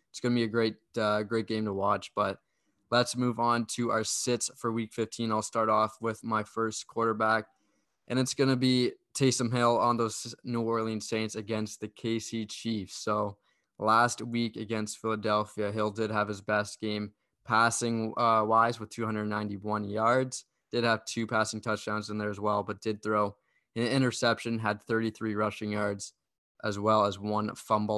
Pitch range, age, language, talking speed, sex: 105-115 Hz, 20-39, English, 180 wpm, male